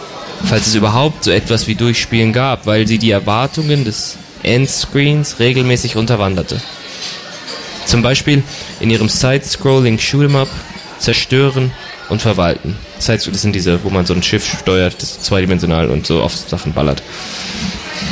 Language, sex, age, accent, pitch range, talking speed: German, male, 20-39, German, 105-130 Hz, 140 wpm